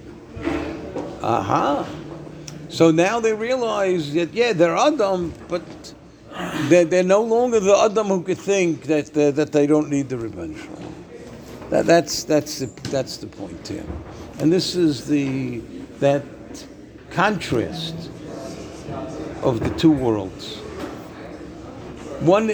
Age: 60-79